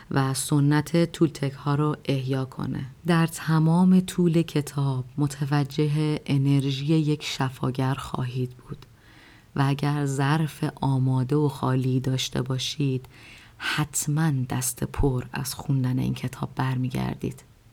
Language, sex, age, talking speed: Persian, female, 30-49, 110 wpm